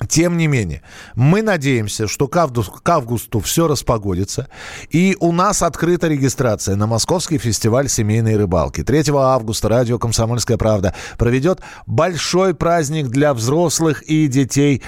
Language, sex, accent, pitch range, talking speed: Russian, male, native, 125-170 Hz, 135 wpm